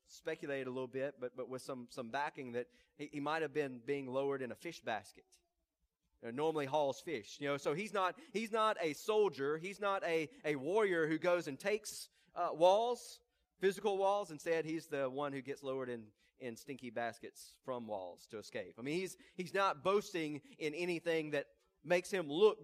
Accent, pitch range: American, 135-180 Hz